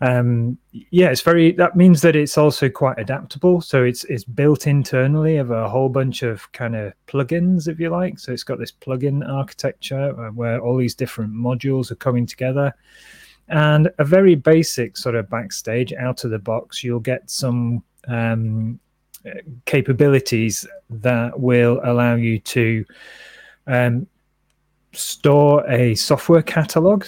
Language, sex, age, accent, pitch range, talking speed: English, male, 30-49, British, 115-150 Hz, 150 wpm